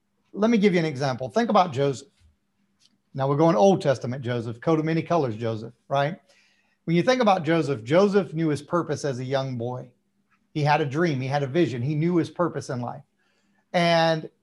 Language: English